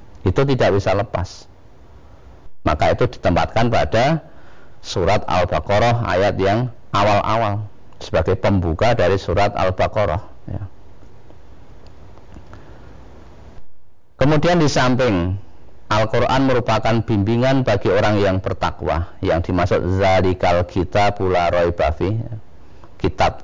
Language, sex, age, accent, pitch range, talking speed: Indonesian, male, 40-59, native, 90-115 Hz, 95 wpm